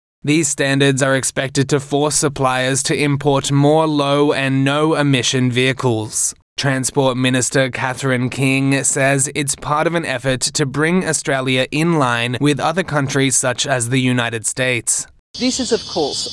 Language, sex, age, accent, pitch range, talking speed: English, male, 20-39, Australian, 135-160 Hz, 150 wpm